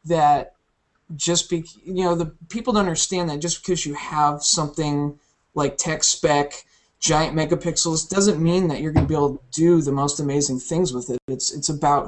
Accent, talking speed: American, 195 wpm